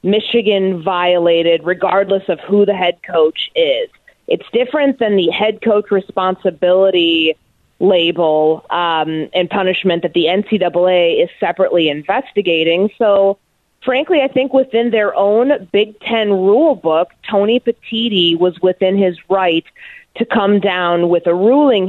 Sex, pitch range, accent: female, 165-210 Hz, American